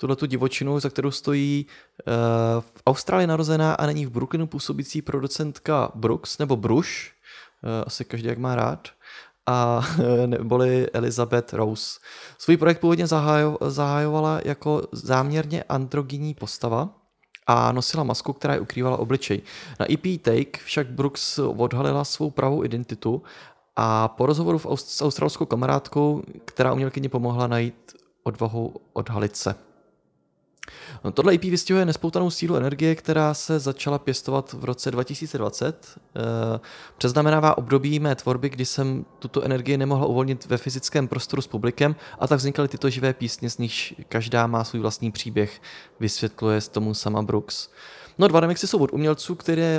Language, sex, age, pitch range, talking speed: Czech, male, 20-39, 120-150 Hz, 145 wpm